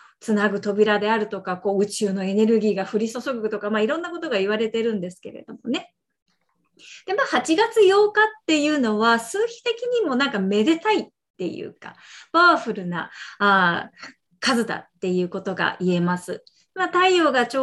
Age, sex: 30-49, female